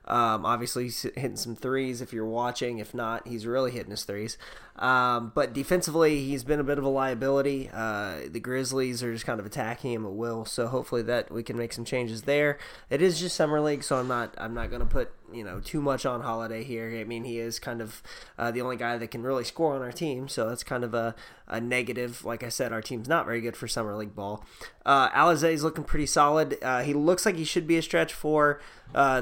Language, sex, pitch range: English, male, 115-145 Hz